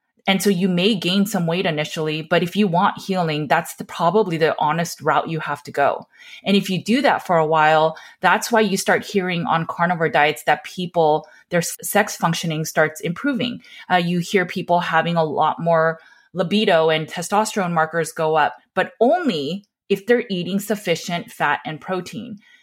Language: English